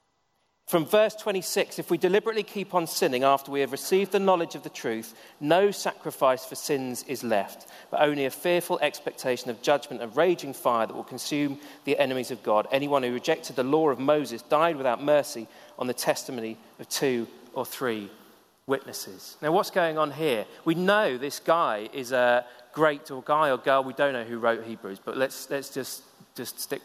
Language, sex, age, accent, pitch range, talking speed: English, male, 40-59, British, 135-185 Hz, 195 wpm